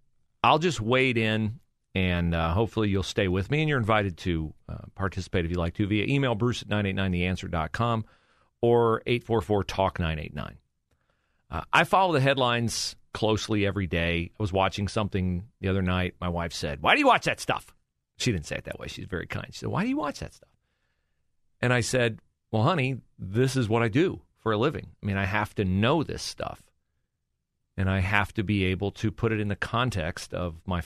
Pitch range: 90-120 Hz